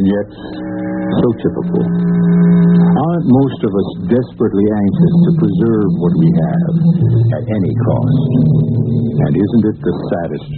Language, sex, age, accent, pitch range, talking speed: English, male, 60-79, American, 105-145 Hz, 125 wpm